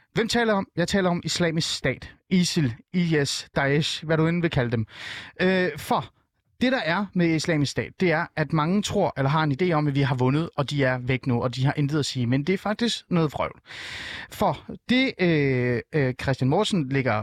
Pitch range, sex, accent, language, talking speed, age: 135-185 Hz, male, native, Danish, 220 wpm, 30-49